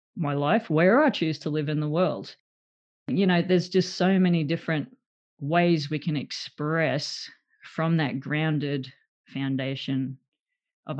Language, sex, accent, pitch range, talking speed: English, female, Australian, 150-185 Hz, 140 wpm